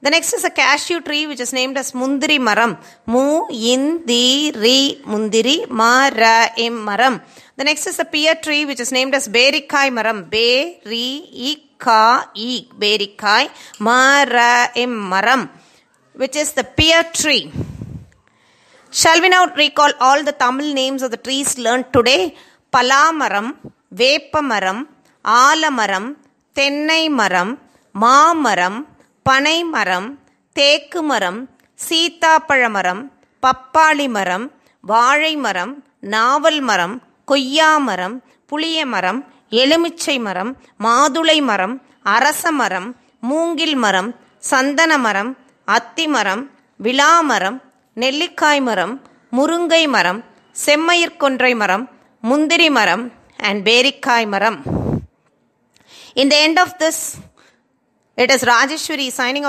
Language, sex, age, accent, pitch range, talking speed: Tamil, female, 30-49, native, 230-300 Hz, 100 wpm